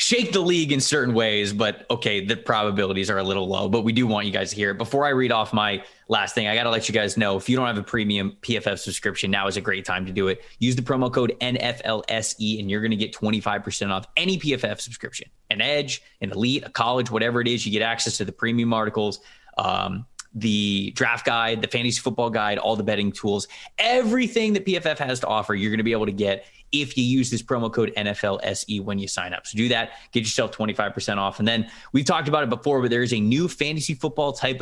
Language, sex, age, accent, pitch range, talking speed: English, male, 20-39, American, 105-135 Hz, 250 wpm